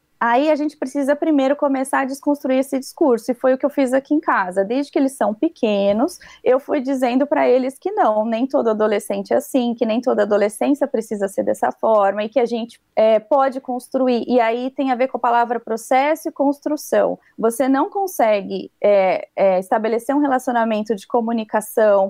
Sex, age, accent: female, 20-39, Brazilian